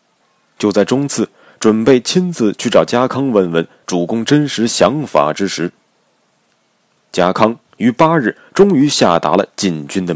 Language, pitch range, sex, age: Chinese, 90-130 Hz, male, 30-49